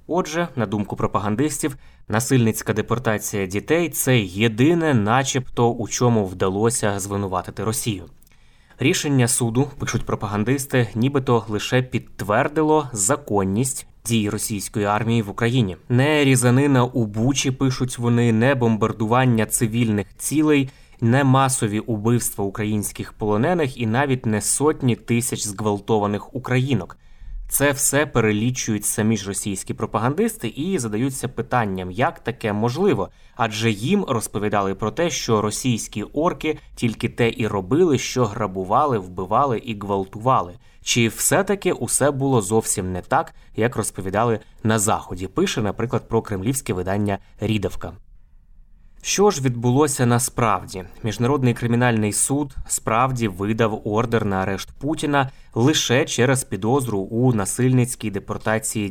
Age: 20-39